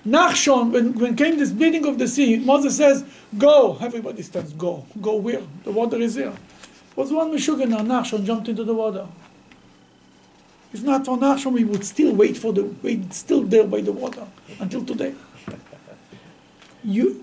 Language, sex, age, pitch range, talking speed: English, male, 50-69, 185-240 Hz, 175 wpm